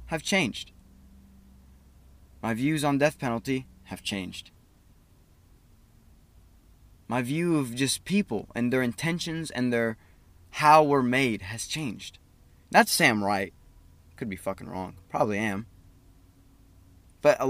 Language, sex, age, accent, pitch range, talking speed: English, male, 20-39, American, 90-140 Hz, 120 wpm